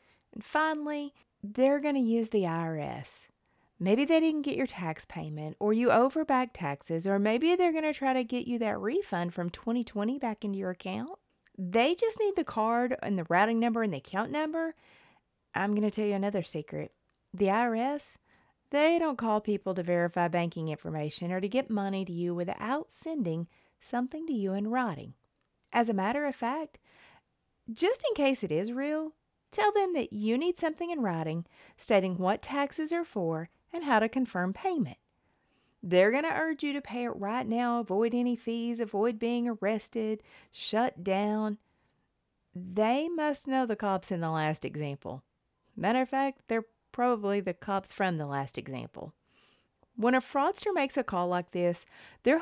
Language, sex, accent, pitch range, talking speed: English, female, American, 185-270 Hz, 175 wpm